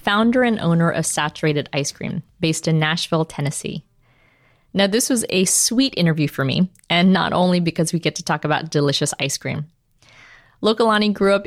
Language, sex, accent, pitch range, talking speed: English, female, American, 150-195 Hz, 180 wpm